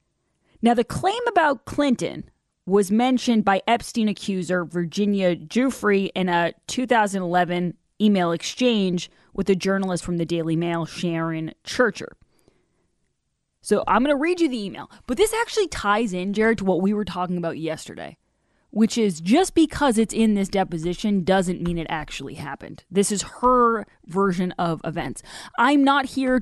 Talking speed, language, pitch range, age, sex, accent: 155 wpm, English, 170-220 Hz, 20-39, female, American